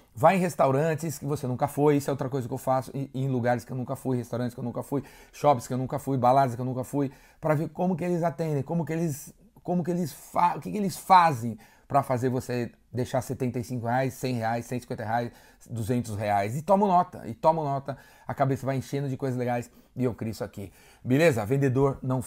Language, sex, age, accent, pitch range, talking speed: Portuguese, male, 30-49, Brazilian, 120-150 Hz, 245 wpm